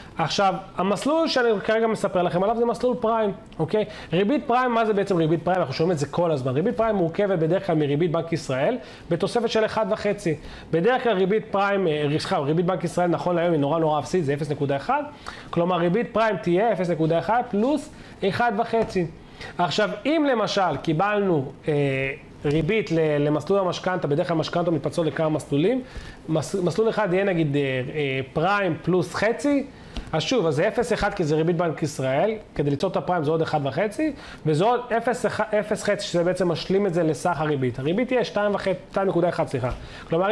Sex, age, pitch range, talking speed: male, 30-49, 160-215 Hz, 165 wpm